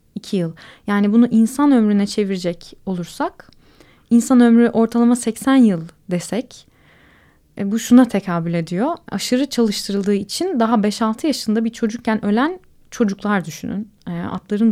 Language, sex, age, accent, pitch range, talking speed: Turkish, female, 20-39, native, 190-235 Hz, 115 wpm